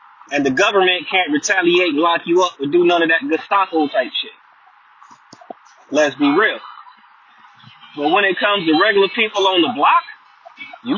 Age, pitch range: 30-49, 195-240 Hz